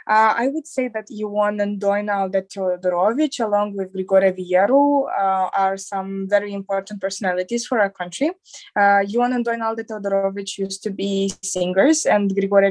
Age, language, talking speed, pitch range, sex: 20-39, English, 150 wpm, 190-235 Hz, female